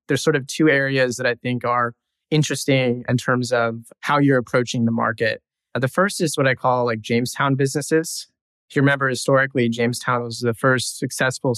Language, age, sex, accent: English, 20-39, male, American